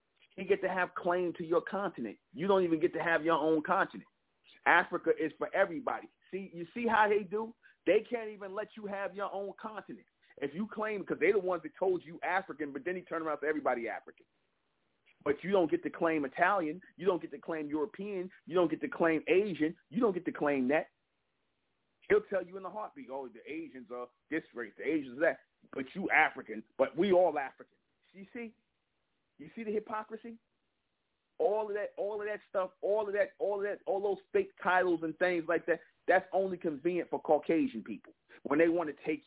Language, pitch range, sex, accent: English, 150-195 Hz, male, American